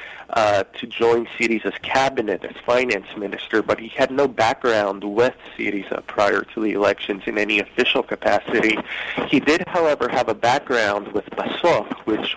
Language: English